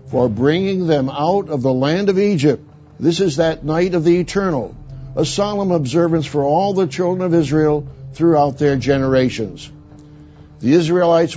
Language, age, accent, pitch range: English, 60-79, American, 130-165 Hz